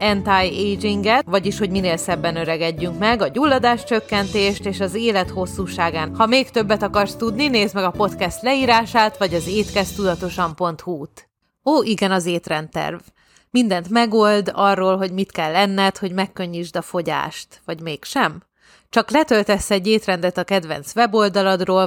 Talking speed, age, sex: 145 wpm, 30-49, female